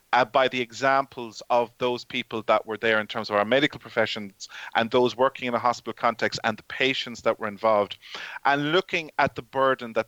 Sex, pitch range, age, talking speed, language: male, 115-145 Hz, 30-49, 200 wpm, English